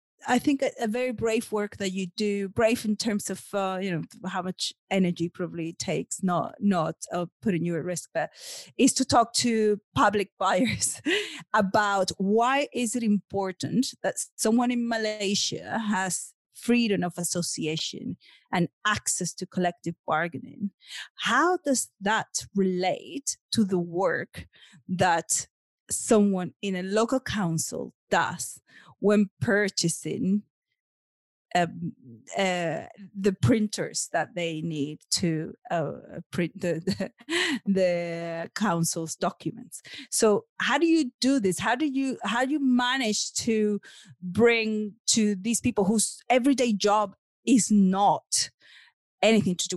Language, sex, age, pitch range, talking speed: English, female, 30-49, 180-230 Hz, 135 wpm